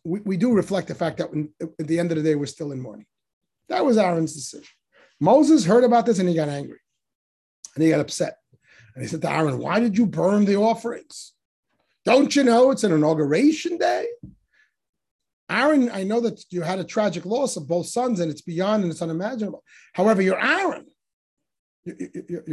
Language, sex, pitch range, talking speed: English, male, 170-245 Hz, 195 wpm